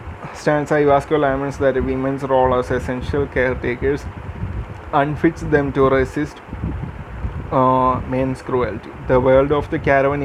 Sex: male